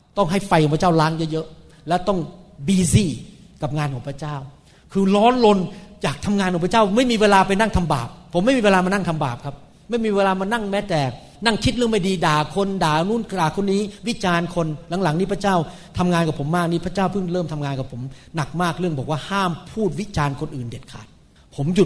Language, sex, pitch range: Thai, male, 145-195 Hz